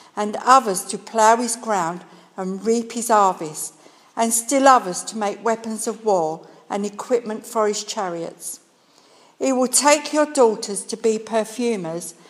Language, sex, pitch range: English, female, 190-240 Hz